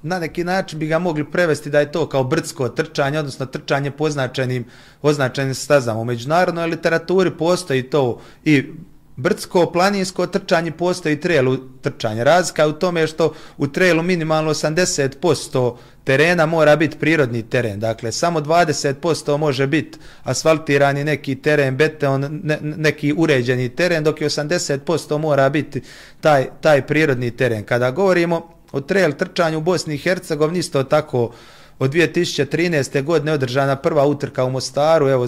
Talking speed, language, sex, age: 145 wpm, Croatian, male, 30-49